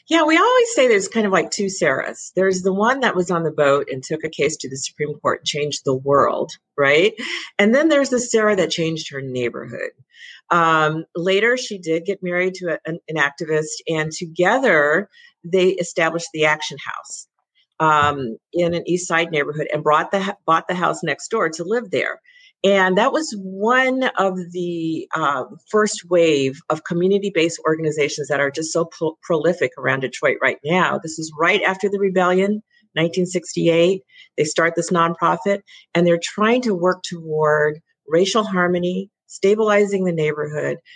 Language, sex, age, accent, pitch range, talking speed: English, female, 50-69, American, 155-205 Hz, 175 wpm